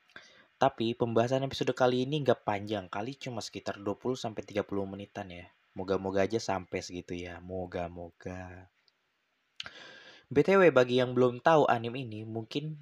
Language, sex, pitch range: Indonesian, male, 100-125 Hz